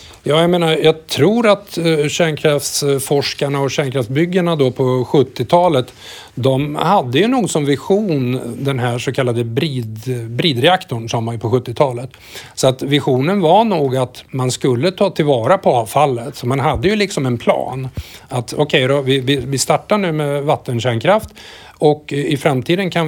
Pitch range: 125-155 Hz